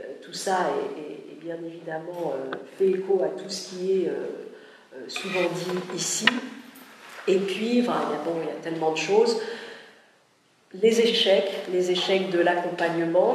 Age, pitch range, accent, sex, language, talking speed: 50-69, 165-195 Hz, French, female, French, 170 wpm